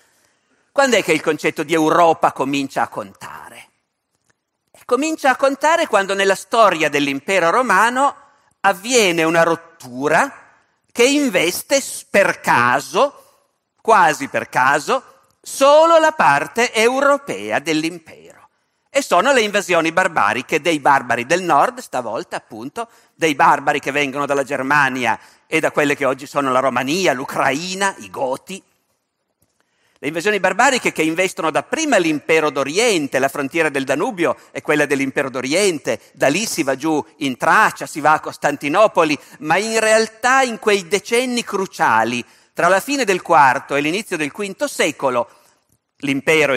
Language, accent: Italian, native